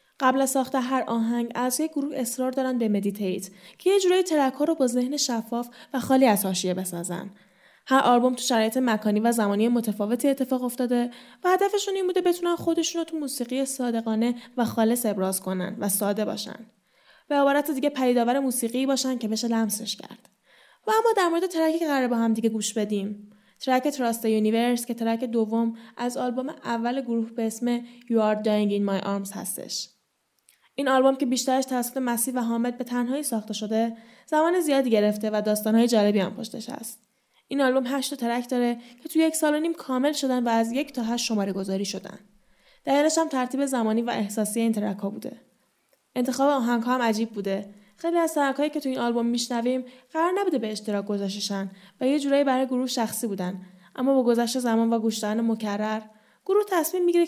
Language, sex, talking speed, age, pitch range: Persian, female, 185 wpm, 10-29, 215-270 Hz